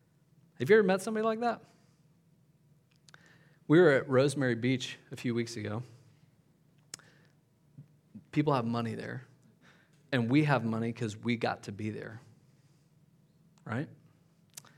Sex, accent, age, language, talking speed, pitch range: male, American, 40-59, English, 125 wpm, 125-160 Hz